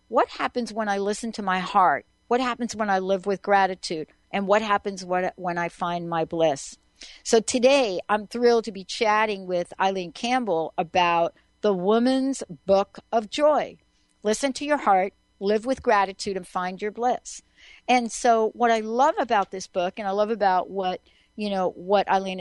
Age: 60-79